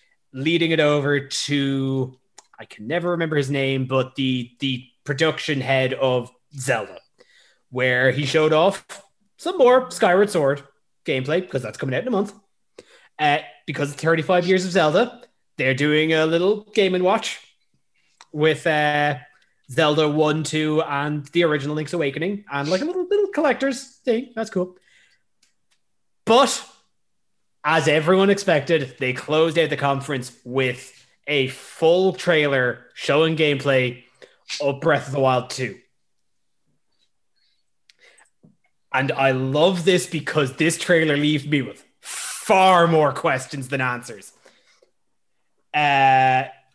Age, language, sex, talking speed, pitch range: 20-39, English, male, 130 wpm, 135-175 Hz